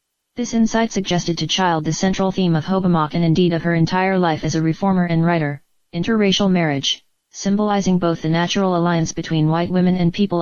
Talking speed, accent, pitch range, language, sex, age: 190 wpm, American, 160-185 Hz, English, female, 30-49